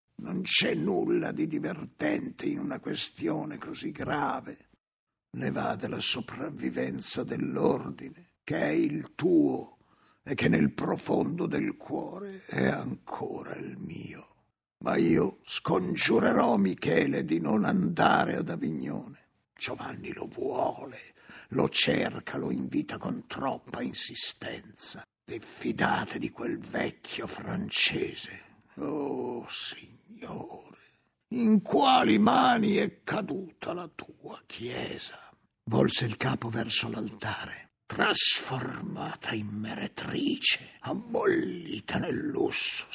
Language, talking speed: Italian, 105 wpm